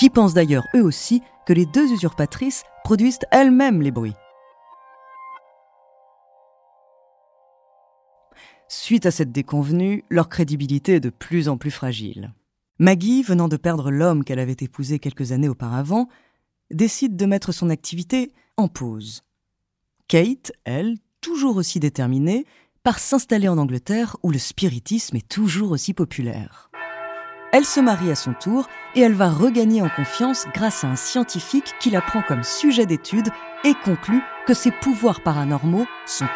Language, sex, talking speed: French, female, 145 wpm